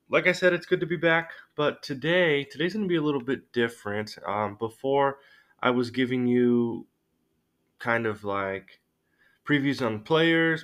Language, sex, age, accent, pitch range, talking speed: English, male, 20-39, American, 100-135 Hz, 170 wpm